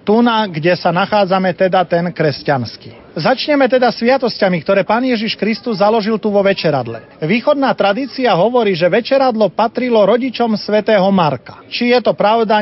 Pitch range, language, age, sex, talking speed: 185-235 Hz, Slovak, 30-49, male, 150 wpm